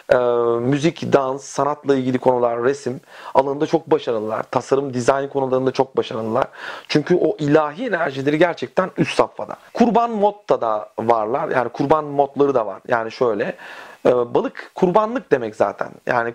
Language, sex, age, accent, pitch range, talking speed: Turkish, male, 40-59, native, 130-170 Hz, 145 wpm